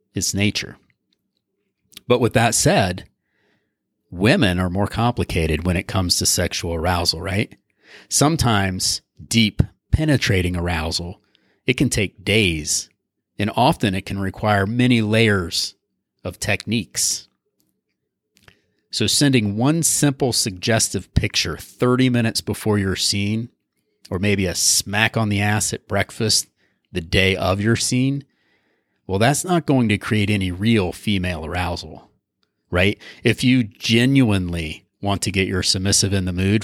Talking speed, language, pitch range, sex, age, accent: 135 wpm, English, 95-120 Hz, male, 30-49, American